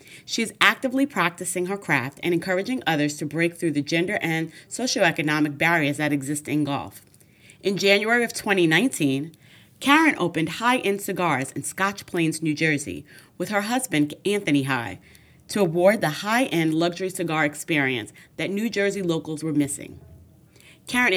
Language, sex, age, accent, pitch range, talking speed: English, female, 30-49, American, 150-195 Hz, 150 wpm